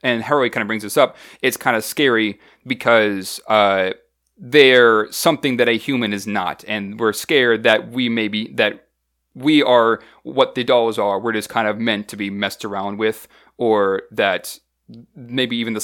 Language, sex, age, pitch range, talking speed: English, male, 30-49, 105-130 Hz, 180 wpm